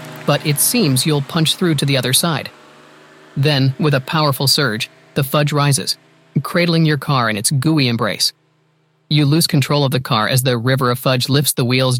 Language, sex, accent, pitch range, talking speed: English, male, American, 130-150 Hz, 195 wpm